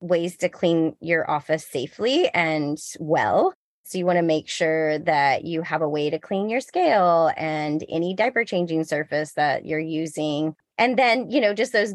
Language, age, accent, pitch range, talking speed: English, 30-49, American, 175-225 Hz, 185 wpm